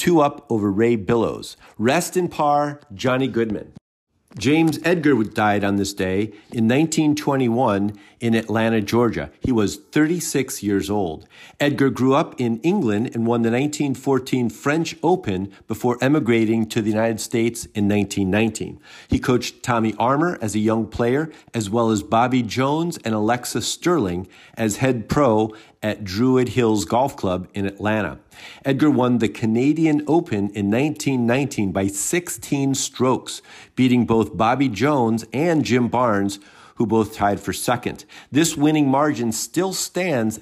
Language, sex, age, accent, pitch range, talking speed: English, male, 50-69, American, 105-135 Hz, 155 wpm